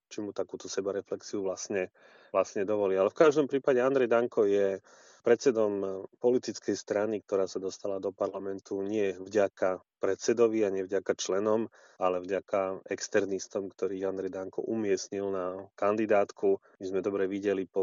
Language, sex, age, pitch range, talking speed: Slovak, male, 30-49, 95-105 Hz, 145 wpm